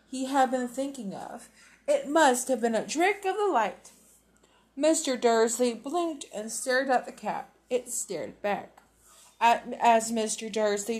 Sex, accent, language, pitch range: female, American, English, 225-300 Hz